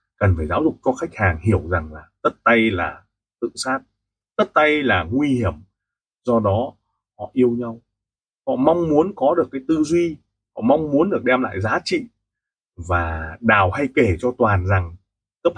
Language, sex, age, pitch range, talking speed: Vietnamese, male, 30-49, 105-170 Hz, 190 wpm